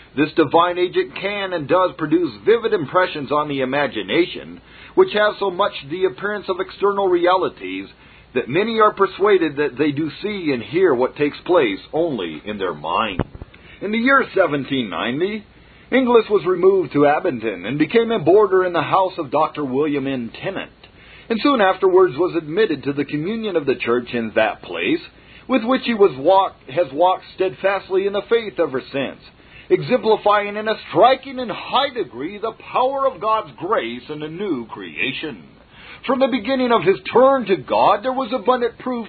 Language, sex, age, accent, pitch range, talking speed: English, male, 50-69, American, 160-245 Hz, 170 wpm